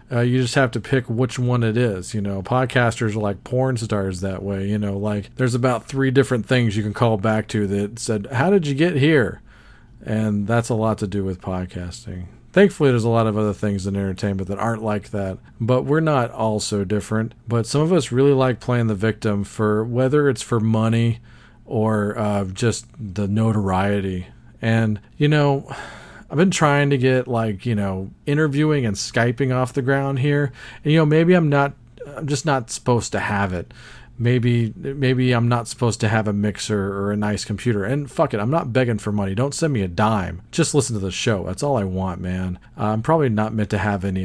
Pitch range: 105-130 Hz